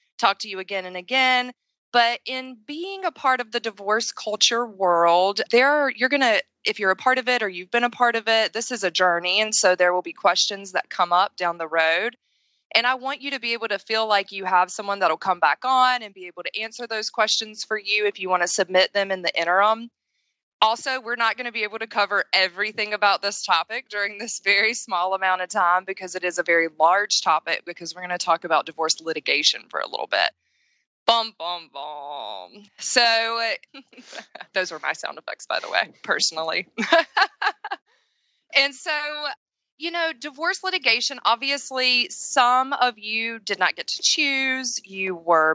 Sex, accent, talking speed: female, American, 200 wpm